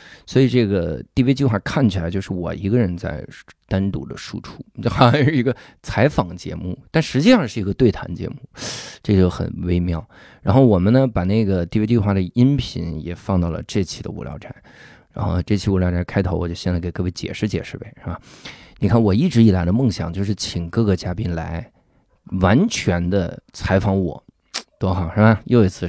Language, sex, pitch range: Chinese, male, 90-110 Hz